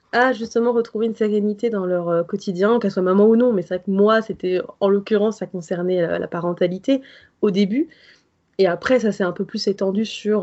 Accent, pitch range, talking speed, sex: French, 190-260 Hz, 215 wpm, female